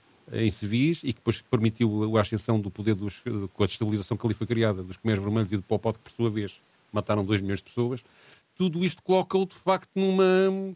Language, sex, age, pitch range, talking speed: Portuguese, male, 40-59, 125-165 Hz, 220 wpm